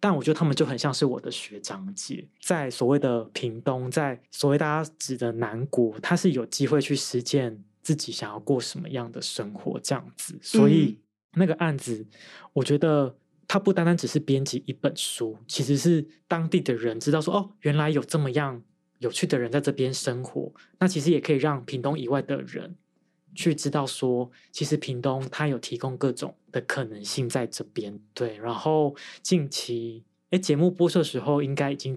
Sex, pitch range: male, 125-155 Hz